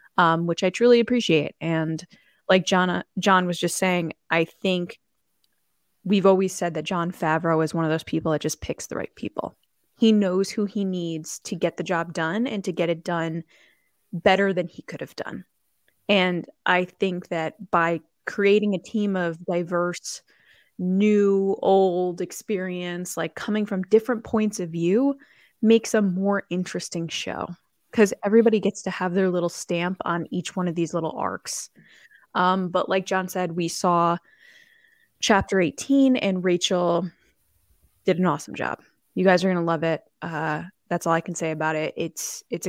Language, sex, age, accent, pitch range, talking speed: English, female, 20-39, American, 165-200 Hz, 175 wpm